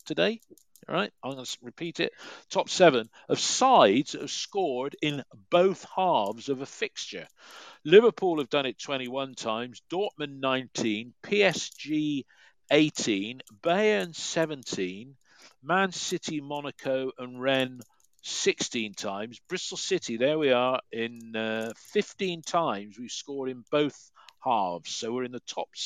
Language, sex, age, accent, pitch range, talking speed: English, male, 50-69, British, 115-170 Hz, 135 wpm